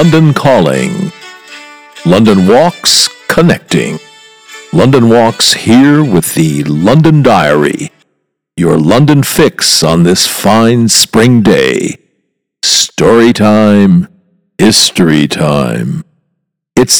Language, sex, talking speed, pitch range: English, male, 90 wpm, 90-145 Hz